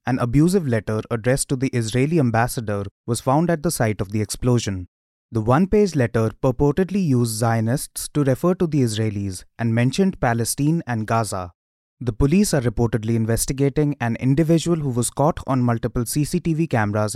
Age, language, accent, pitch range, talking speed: 20-39, English, Indian, 115-145 Hz, 160 wpm